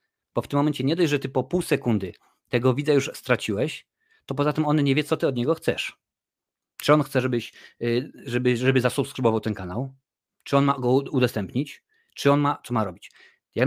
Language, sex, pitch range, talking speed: Polish, male, 115-135 Hz, 205 wpm